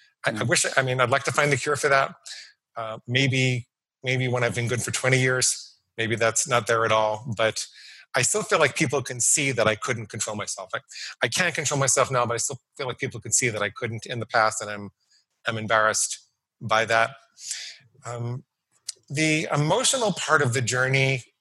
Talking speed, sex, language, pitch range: 205 wpm, male, English, 115-130 Hz